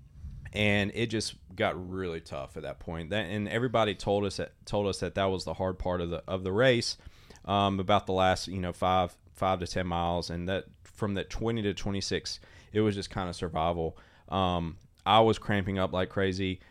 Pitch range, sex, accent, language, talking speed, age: 90-105 Hz, male, American, English, 215 wpm, 20-39